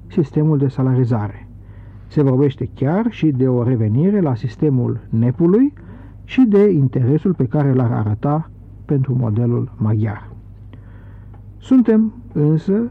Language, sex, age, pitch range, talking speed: Romanian, male, 60-79, 110-165 Hz, 115 wpm